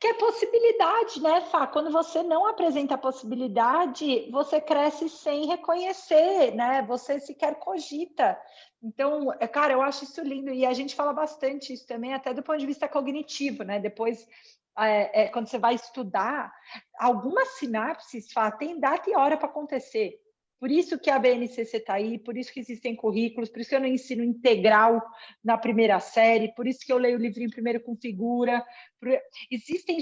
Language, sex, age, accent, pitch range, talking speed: Portuguese, female, 40-59, Brazilian, 245-305 Hz, 175 wpm